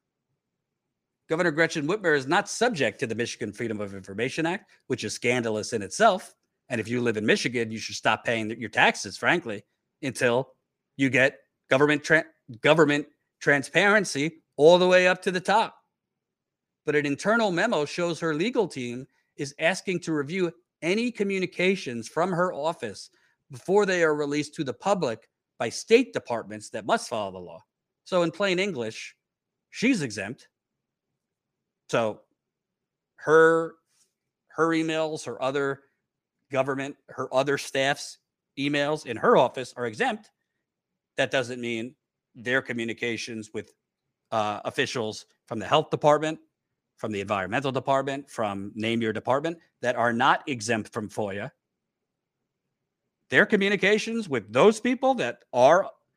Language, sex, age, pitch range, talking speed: English, male, 40-59, 120-175 Hz, 140 wpm